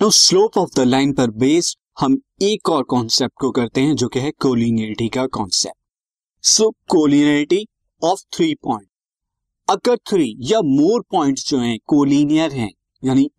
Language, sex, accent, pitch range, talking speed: Hindi, male, native, 125-195 Hz, 145 wpm